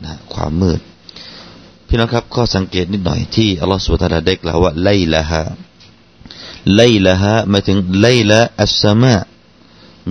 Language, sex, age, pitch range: Thai, male, 30-49, 85-105 Hz